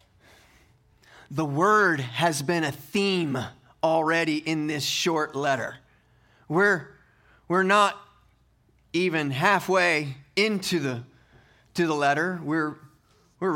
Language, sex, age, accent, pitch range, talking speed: English, male, 30-49, American, 165-210 Hz, 100 wpm